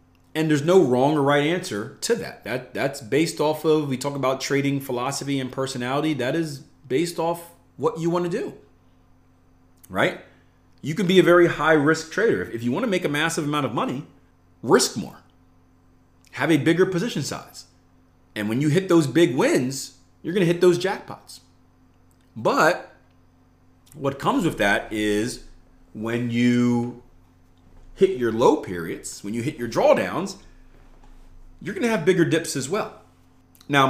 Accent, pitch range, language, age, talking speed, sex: American, 85-145 Hz, English, 30-49, 165 wpm, male